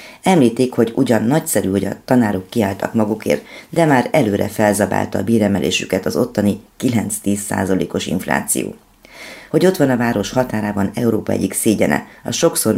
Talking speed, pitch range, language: 140 wpm, 100-120 Hz, Hungarian